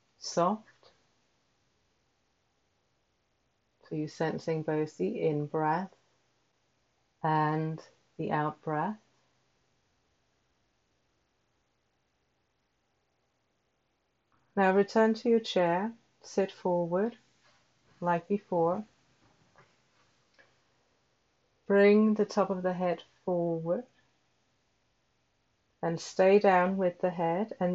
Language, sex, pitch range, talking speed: English, female, 170-210 Hz, 70 wpm